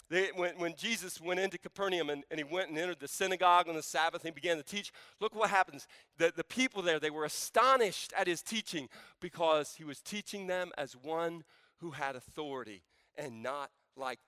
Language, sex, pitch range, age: English, male, 175-235 Hz, 40-59